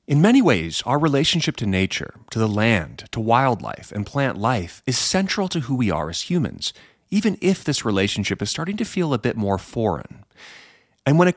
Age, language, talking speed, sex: 30-49, English, 200 wpm, male